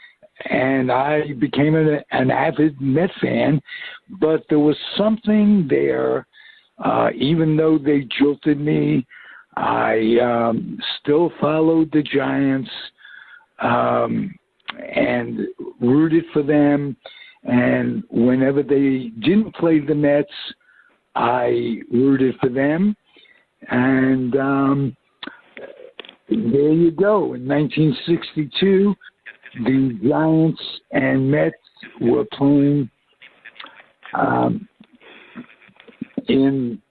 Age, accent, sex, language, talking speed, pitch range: 60-79, American, male, English, 90 wpm, 125-160 Hz